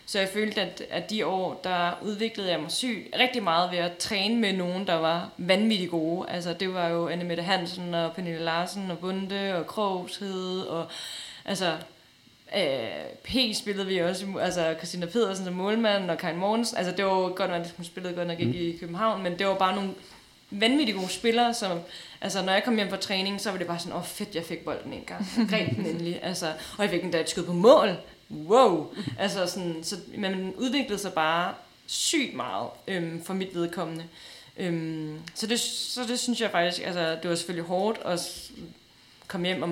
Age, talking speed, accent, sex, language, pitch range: 20-39, 200 wpm, native, female, Danish, 170-200 Hz